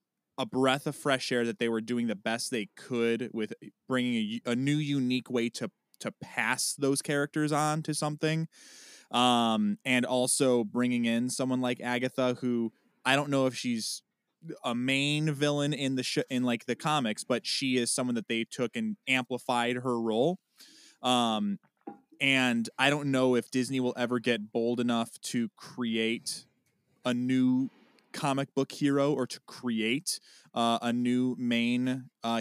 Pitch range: 115-145 Hz